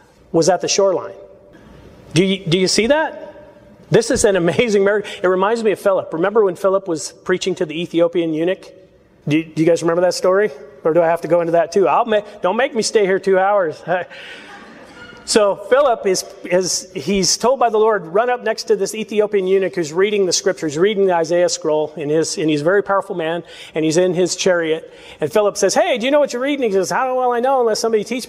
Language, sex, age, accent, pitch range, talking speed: English, male, 40-59, American, 180-235 Hz, 225 wpm